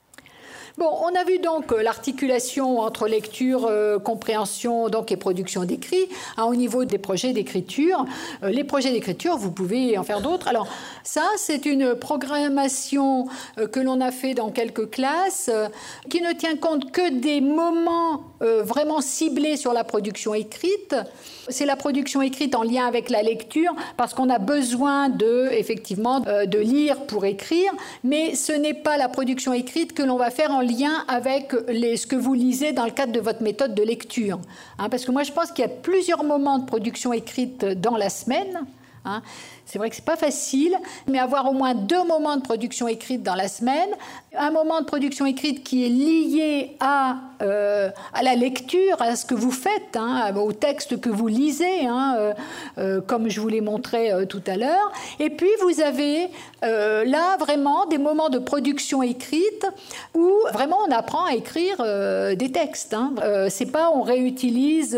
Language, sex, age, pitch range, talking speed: French, female, 50-69, 225-300 Hz, 185 wpm